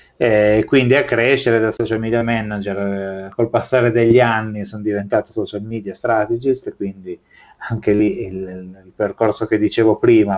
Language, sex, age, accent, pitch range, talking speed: Italian, male, 30-49, native, 100-115 Hz, 145 wpm